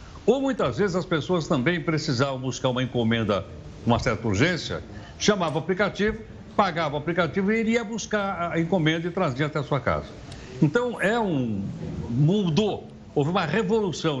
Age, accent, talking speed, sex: 60-79, Brazilian, 155 wpm, male